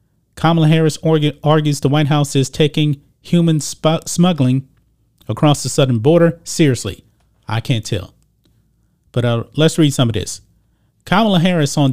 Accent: American